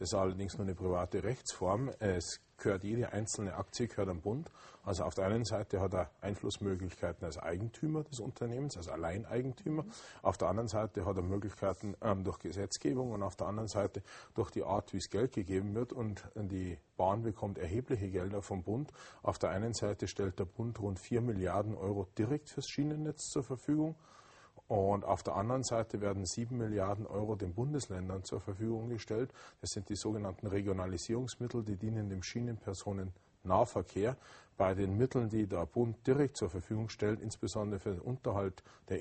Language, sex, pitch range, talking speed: German, male, 95-115 Hz, 175 wpm